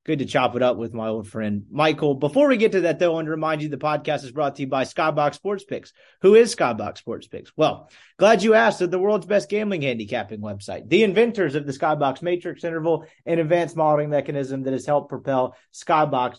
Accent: American